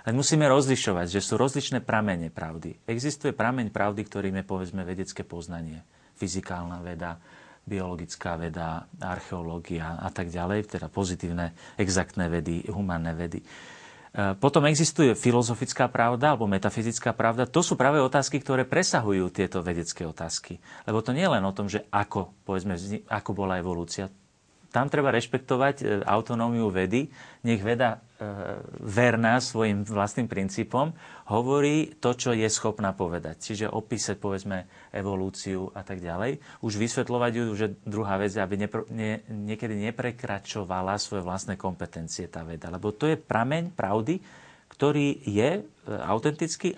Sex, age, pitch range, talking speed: male, 40-59, 95-125 Hz, 135 wpm